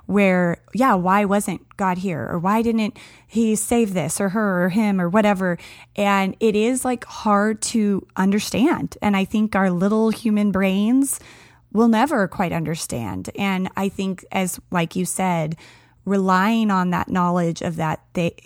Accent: American